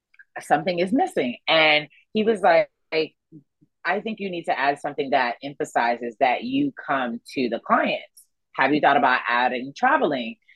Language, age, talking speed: English, 30-49, 160 wpm